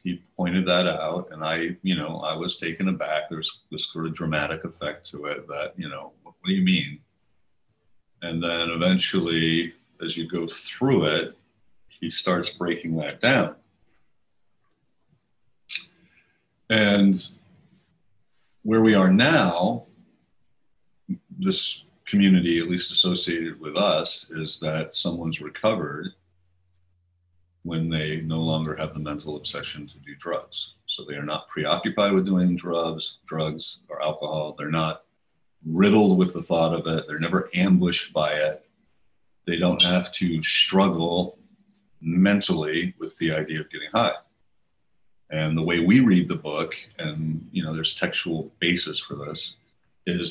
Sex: male